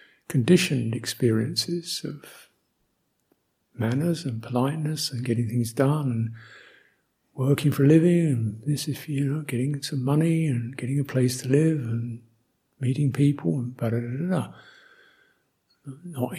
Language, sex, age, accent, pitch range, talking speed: English, male, 50-69, British, 115-150 Hz, 135 wpm